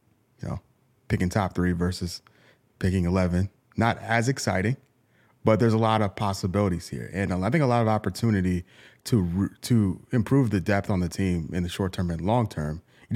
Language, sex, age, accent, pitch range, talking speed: English, male, 30-49, American, 90-120 Hz, 180 wpm